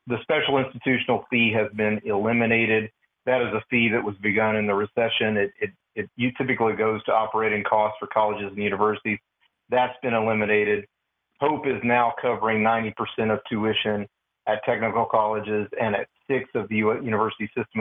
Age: 40-59